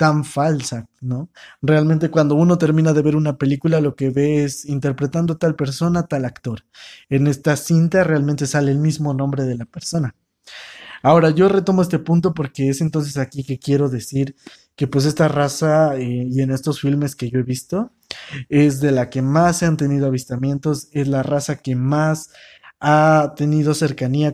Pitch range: 135-155 Hz